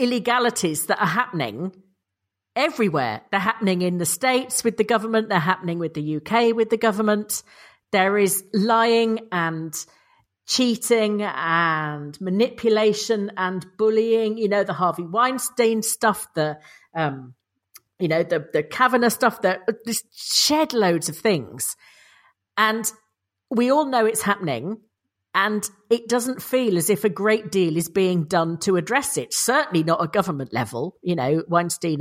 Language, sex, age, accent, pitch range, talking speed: English, female, 40-59, British, 175-235 Hz, 145 wpm